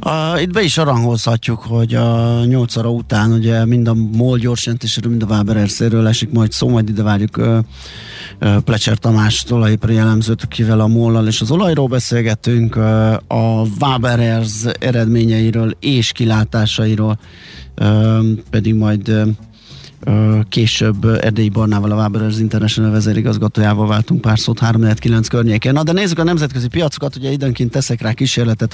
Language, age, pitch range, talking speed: Hungarian, 30-49, 110-125 Hz, 140 wpm